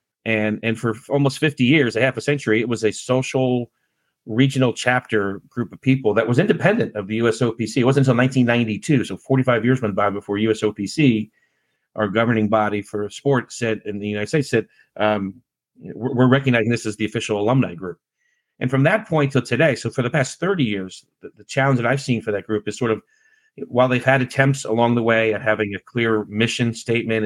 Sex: male